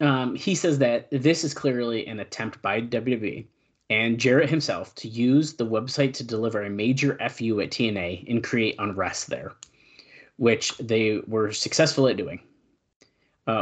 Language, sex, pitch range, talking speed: English, male, 110-140 Hz, 160 wpm